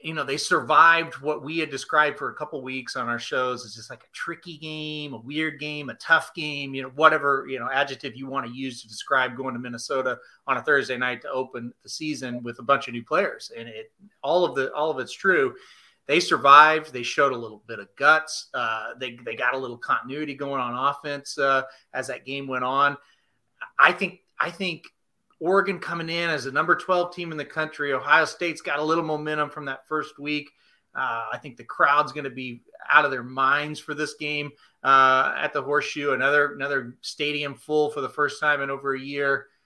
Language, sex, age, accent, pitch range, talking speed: English, male, 30-49, American, 130-155 Hz, 220 wpm